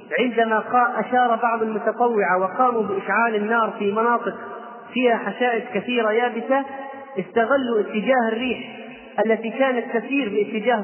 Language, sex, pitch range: Arabic, male, 215-245 Hz